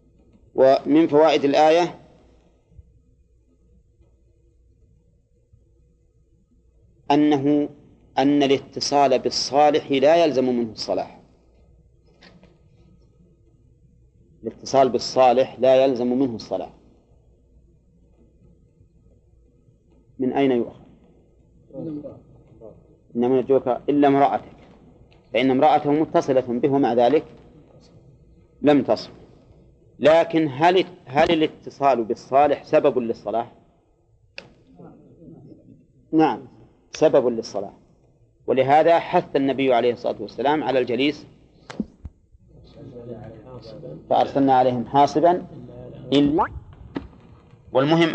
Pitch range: 120-145 Hz